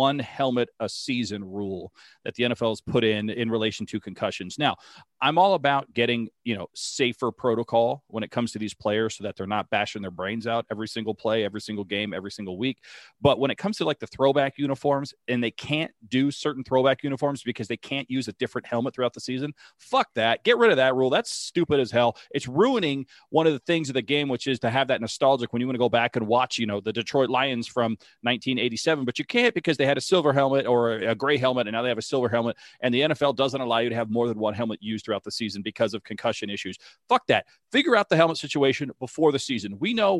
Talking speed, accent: 250 wpm, American